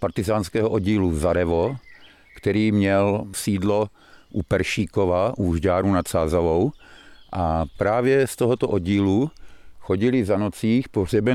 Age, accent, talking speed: 50-69, native, 110 wpm